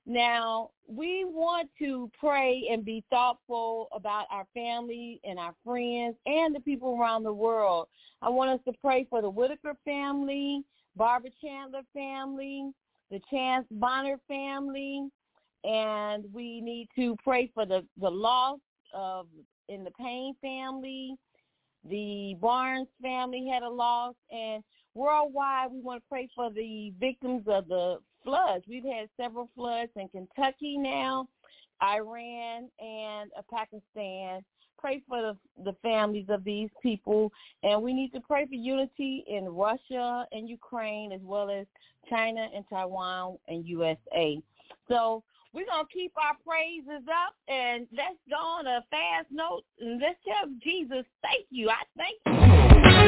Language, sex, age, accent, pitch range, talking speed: English, female, 40-59, American, 215-275 Hz, 145 wpm